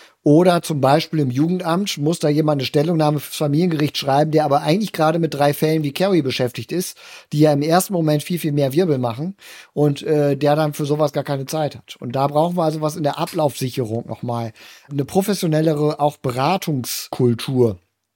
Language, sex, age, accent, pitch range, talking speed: German, male, 50-69, German, 140-165 Hz, 190 wpm